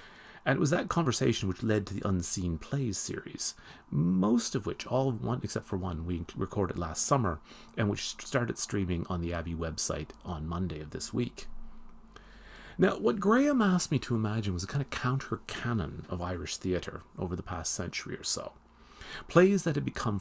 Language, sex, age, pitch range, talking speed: English, male, 30-49, 85-105 Hz, 180 wpm